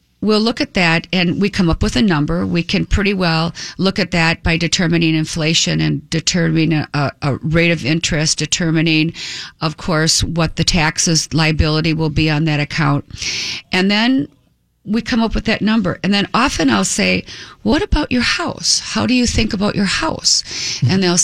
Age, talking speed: 50-69, 185 wpm